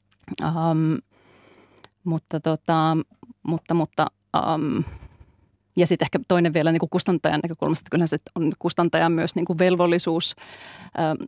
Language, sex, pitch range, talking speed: Finnish, female, 155-185 Hz, 130 wpm